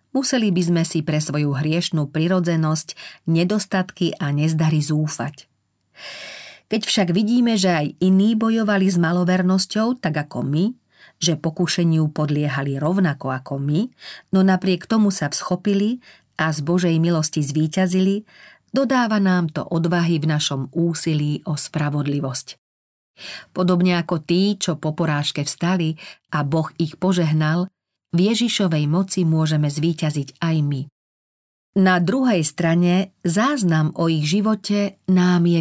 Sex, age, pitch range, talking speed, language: female, 40-59, 150-190 Hz, 130 wpm, Slovak